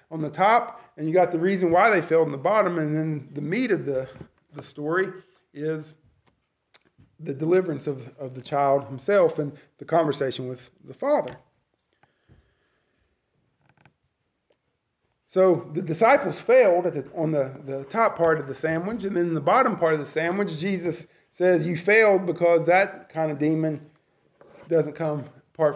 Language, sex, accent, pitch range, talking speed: English, male, American, 150-185 Hz, 165 wpm